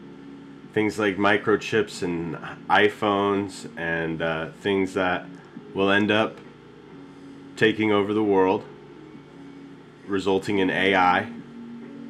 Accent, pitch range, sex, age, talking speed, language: American, 95-120 Hz, male, 30-49, 95 wpm, English